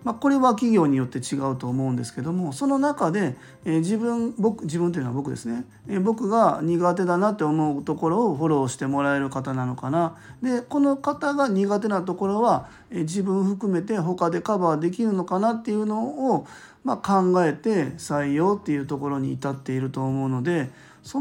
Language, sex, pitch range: Japanese, male, 140-210 Hz